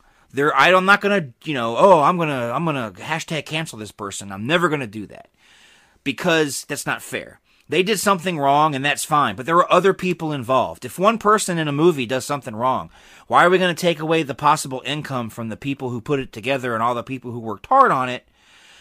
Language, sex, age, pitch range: English, male, 30-49, 120-170 Hz